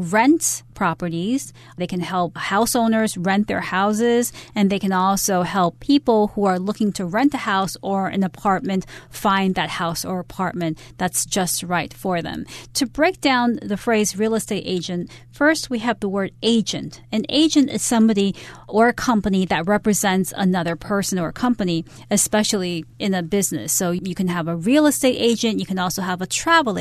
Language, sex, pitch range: Chinese, female, 180-225 Hz